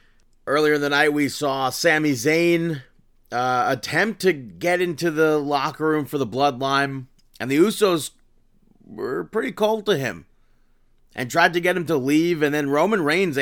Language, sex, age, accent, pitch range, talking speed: English, male, 30-49, American, 135-170 Hz, 170 wpm